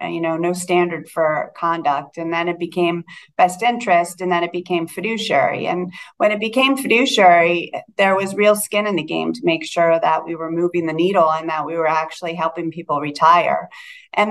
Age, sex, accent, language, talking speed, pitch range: 30-49, female, American, English, 195 wpm, 165-195 Hz